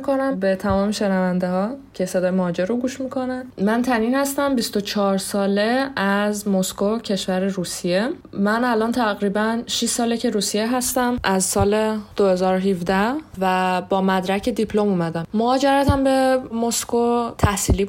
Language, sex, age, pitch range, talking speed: Persian, female, 20-39, 185-235 Hz, 135 wpm